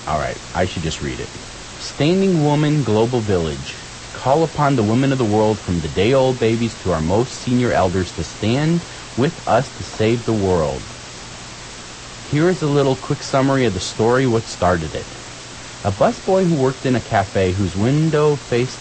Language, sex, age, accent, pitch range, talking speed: English, male, 30-49, American, 85-125 Hz, 180 wpm